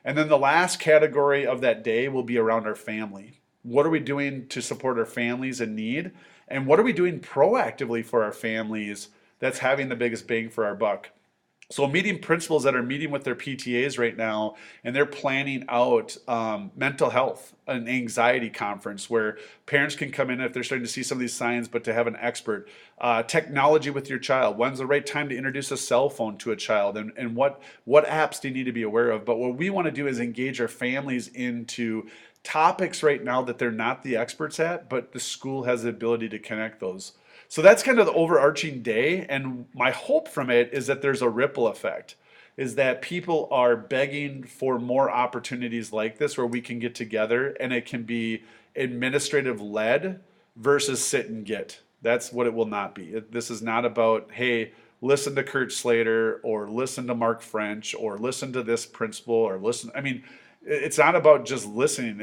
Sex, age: male, 30-49